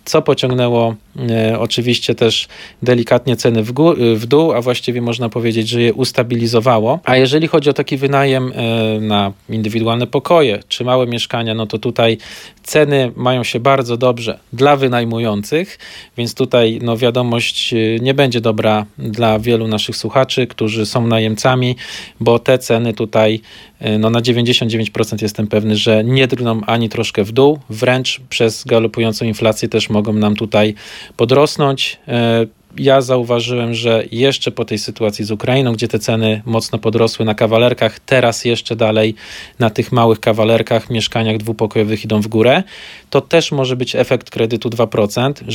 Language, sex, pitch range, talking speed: Polish, male, 110-130 Hz, 145 wpm